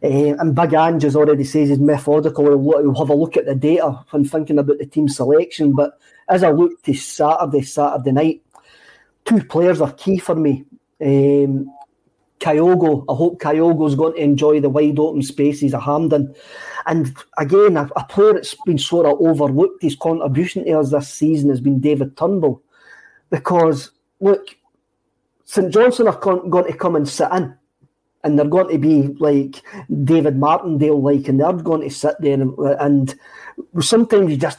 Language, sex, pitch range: English, male, 145-170 Hz